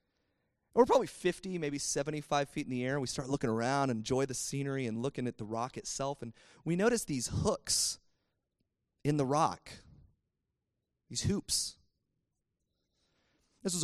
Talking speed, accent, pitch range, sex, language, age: 150 wpm, American, 120-165 Hz, male, English, 30-49